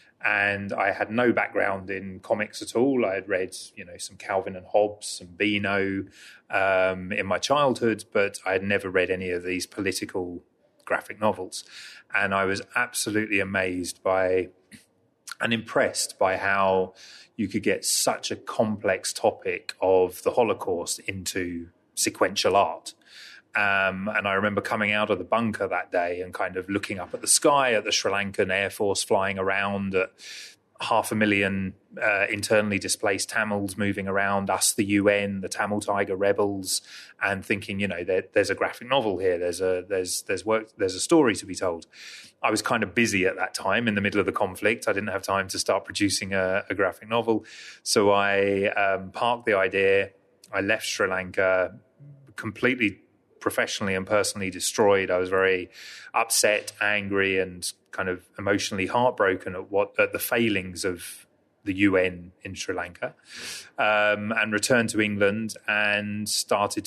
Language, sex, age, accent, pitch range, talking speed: English, male, 30-49, British, 95-105 Hz, 165 wpm